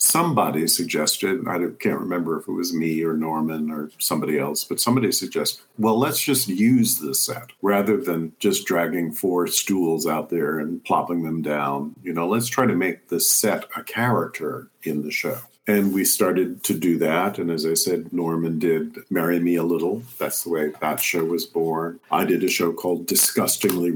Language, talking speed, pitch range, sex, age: English, 195 wpm, 80-105 Hz, male, 50-69